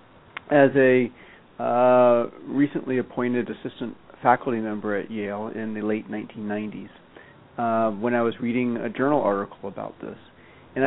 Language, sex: English, male